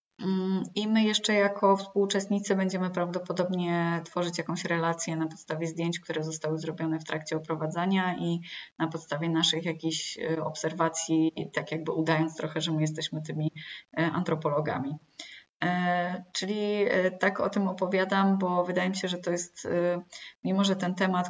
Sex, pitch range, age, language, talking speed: female, 165-190 Hz, 20-39, Polish, 140 wpm